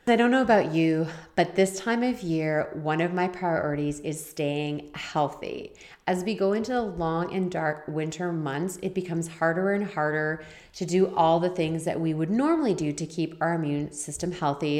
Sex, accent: female, American